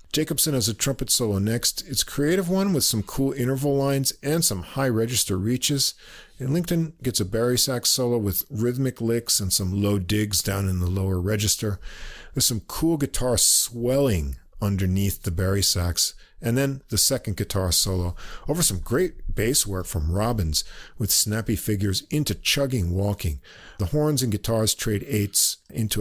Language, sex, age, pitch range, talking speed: English, male, 50-69, 95-125 Hz, 170 wpm